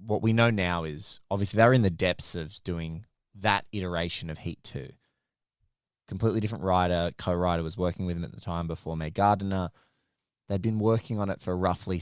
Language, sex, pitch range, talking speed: English, male, 85-105 Hz, 190 wpm